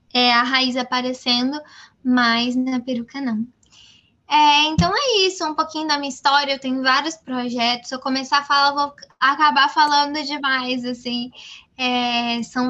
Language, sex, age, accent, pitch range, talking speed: Portuguese, female, 10-29, Brazilian, 245-285 Hz, 160 wpm